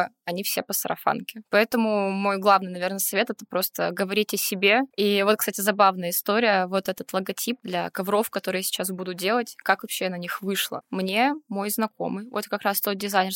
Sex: female